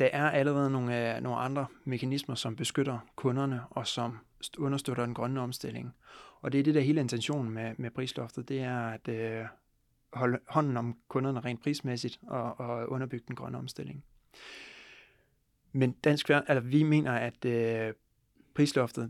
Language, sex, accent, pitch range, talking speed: Danish, male, native, 120-140 Hz, 155 wpm